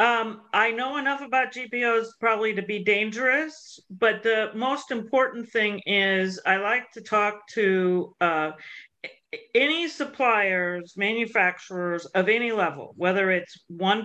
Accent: American